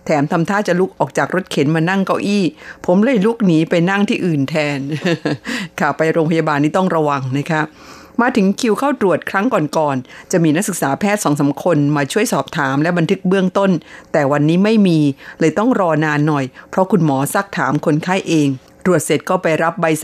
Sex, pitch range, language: female, 155-200 Hz, Thai